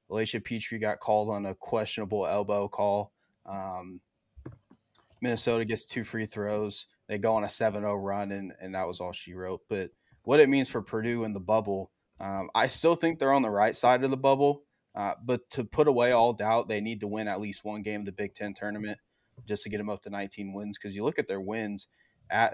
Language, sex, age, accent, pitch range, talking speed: English, male, 20-39, American, 100-115 Hz, 225 wpm